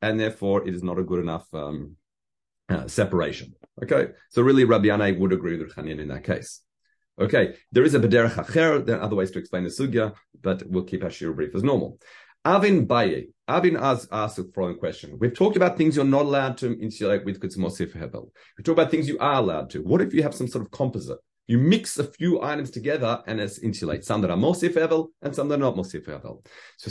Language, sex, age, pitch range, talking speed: English, male, 40-59, 105-145 Hz, 225 wpm